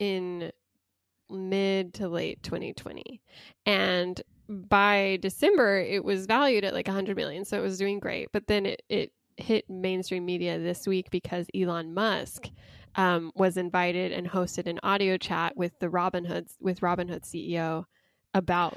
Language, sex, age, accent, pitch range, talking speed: English, female, 10-29, American, 180-205 Hz, 155 wpm